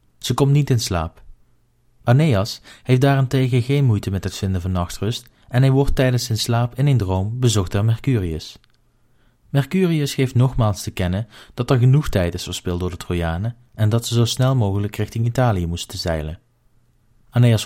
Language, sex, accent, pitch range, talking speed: Dutch, male, Dutch, 100-125 Hz, 175 wpm